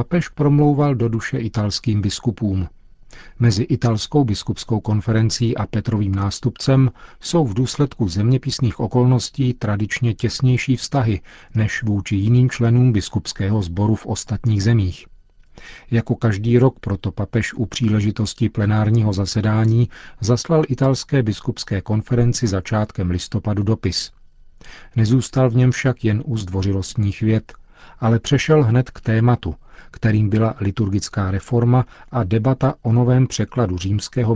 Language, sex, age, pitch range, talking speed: Czech, male, 40-59, 100-125 Hz, 120 wpm